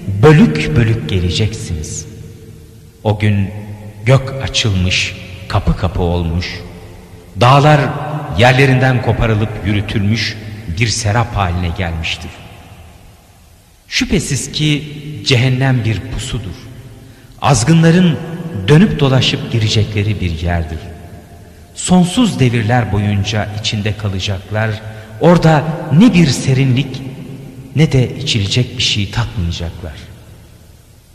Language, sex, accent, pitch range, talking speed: Turkish, male, native, 95-135 Hz, 80 wpm